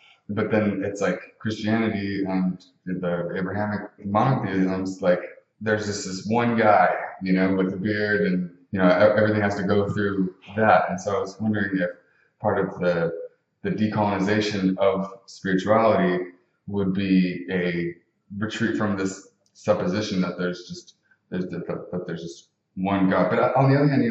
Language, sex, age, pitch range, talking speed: English, male, 20-39, 90-110 Hz, 165 wpm